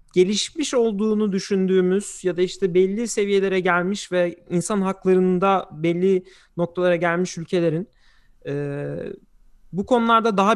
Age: 30-49